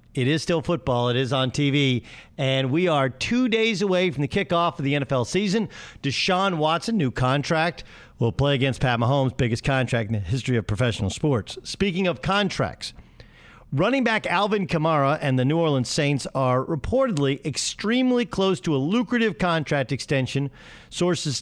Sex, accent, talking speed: male, American, 170 wpm